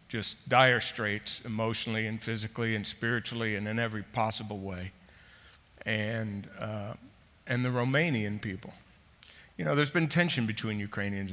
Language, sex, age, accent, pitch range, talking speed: English, male, 50-69, American, 105-135 Hz, 140 wpm